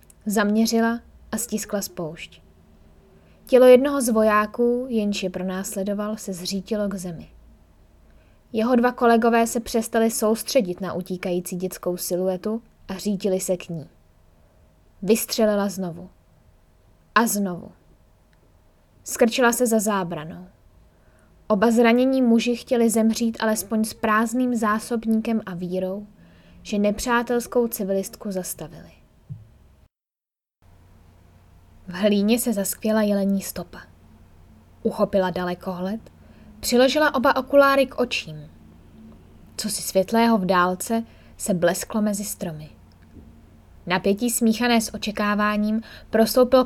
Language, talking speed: Czech, 105 wpm